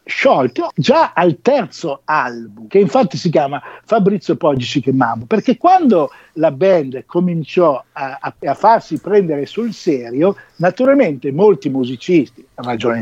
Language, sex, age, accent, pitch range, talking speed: English, male, 50-69, Italian, 140-220 Hz, 135 wpm